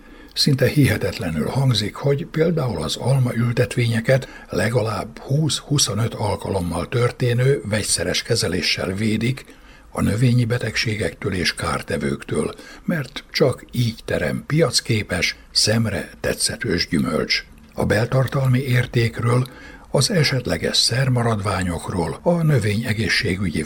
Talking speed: 90 wpm